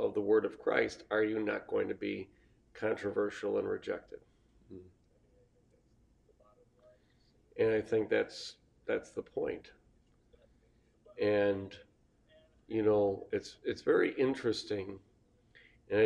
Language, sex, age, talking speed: English, male, 40-59, 110 wpm